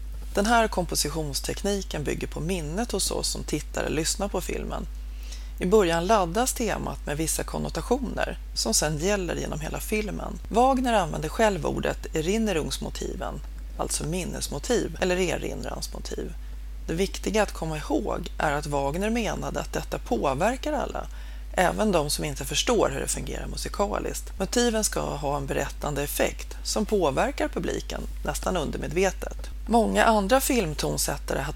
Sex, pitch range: female, 140-205 Hz